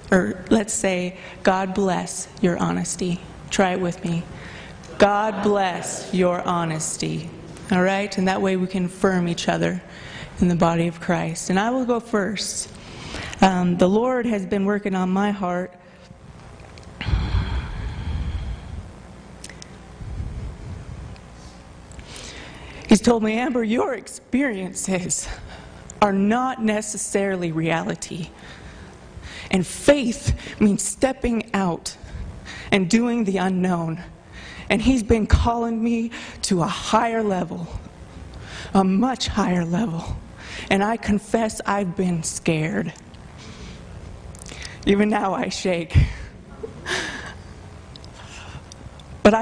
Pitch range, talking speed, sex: 170-210 Hz, 105 wpm, female